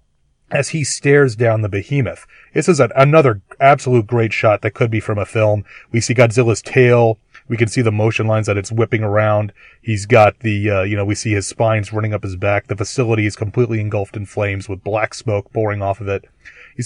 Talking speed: 220 wpm